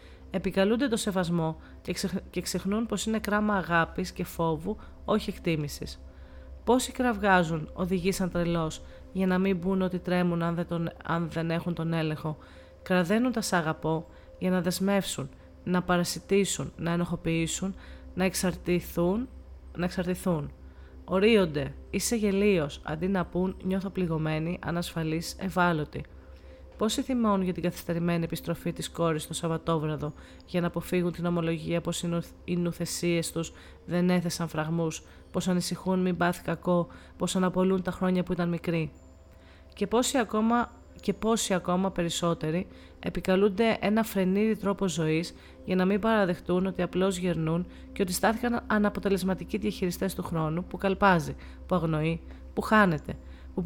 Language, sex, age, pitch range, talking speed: Greek, female, 30-49, 165-195 Hz, 135 wpm